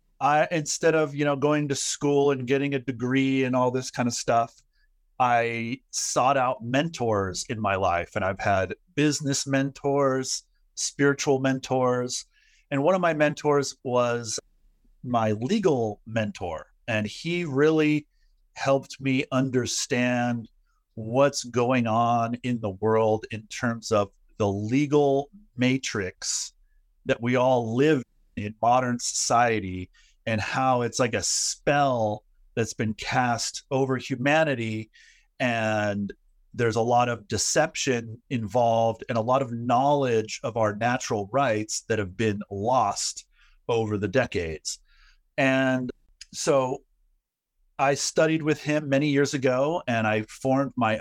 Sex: male